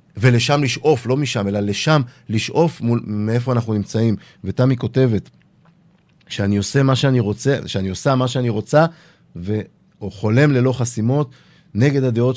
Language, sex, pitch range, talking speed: Hebrew, male, 115-150 Hz, 135 wpm